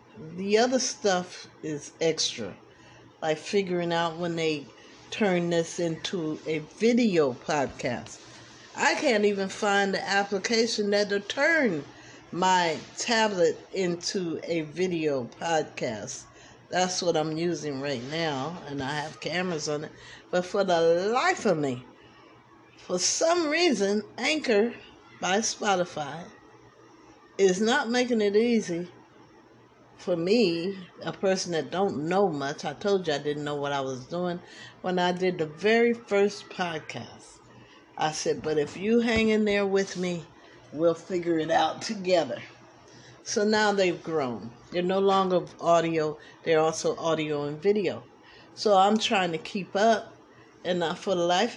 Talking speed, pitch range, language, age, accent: 145 wpm, 160-205 Hz, English, 50-69, American